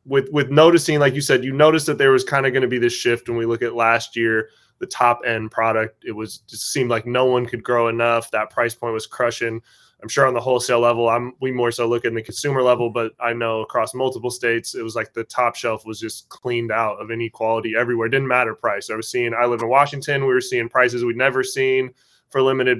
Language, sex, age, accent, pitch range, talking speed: English, male, 20-39, American, 120-145 Hz, 255 wpm